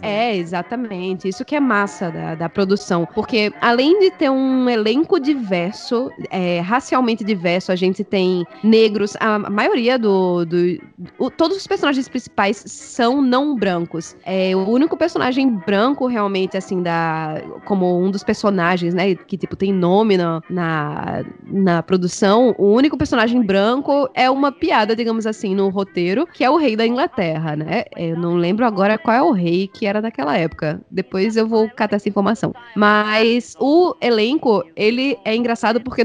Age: 10-29